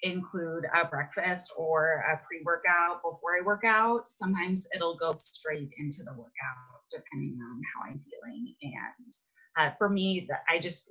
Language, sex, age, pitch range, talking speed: English, female, 20-39, 145-200 Hz, 155 wpm